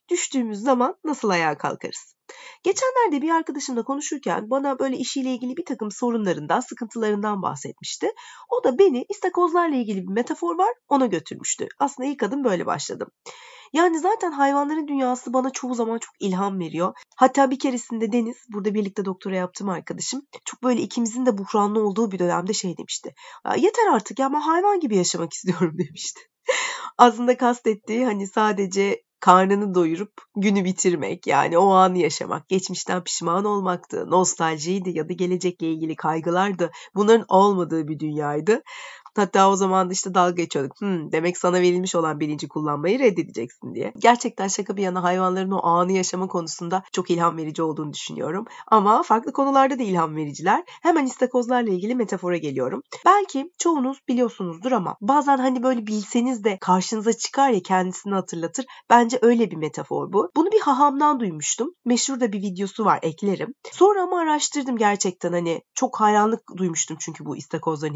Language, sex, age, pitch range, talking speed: Turkish, female, 30-49, 180-275 Hz, 155 wpm